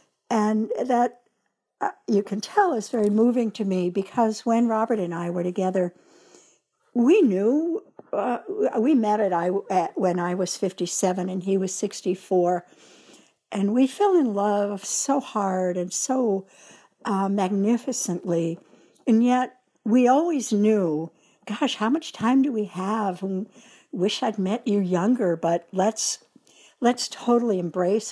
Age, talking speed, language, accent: 60-79, 145 wpm, English, American